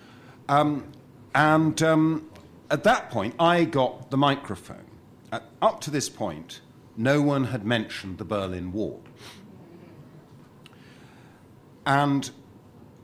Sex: male